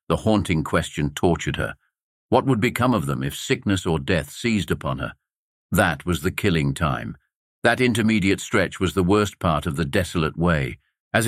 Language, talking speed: English, 180 wpm